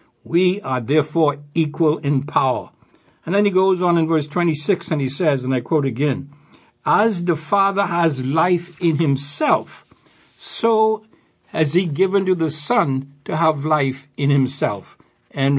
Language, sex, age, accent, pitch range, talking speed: English, male, 60-79, American, 145-180 Hz, 160 wpm